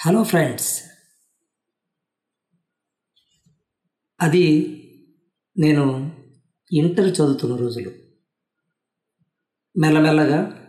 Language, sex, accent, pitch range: Telugu, female, native, 130-160 Hz